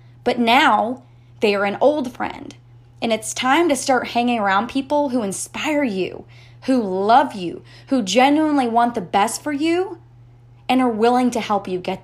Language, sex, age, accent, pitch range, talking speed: English, female, 20-39, American, 180-240 Hz, 175 wpm